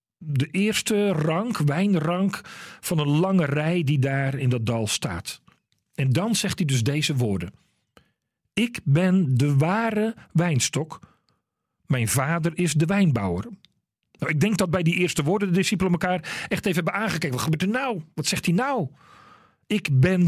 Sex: male